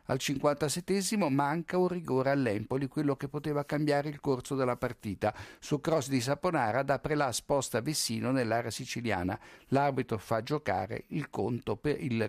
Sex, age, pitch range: male, 50-69, 115-145 Hz